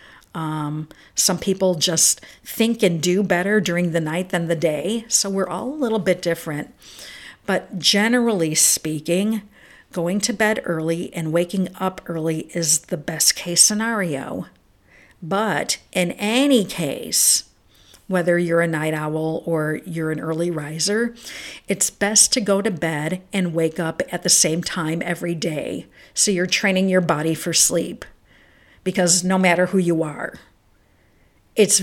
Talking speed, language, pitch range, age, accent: 150 wpm, English, 160-195 Hz, 50-69, American